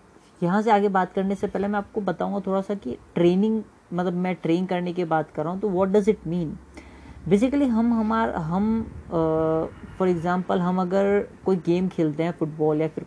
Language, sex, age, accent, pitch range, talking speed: English, female, 20-39, Indian, 170-220 Hz, 200 wpm